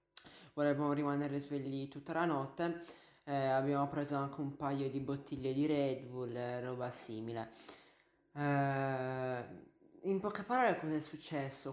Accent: native